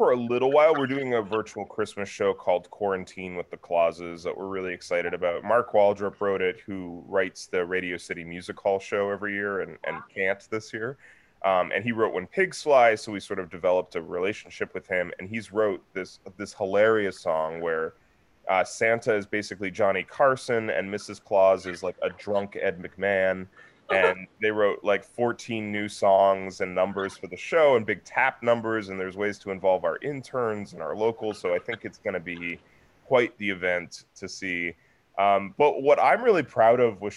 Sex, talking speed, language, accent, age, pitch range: male, 200 wpm, English, American, 20-39, 90-110 Hz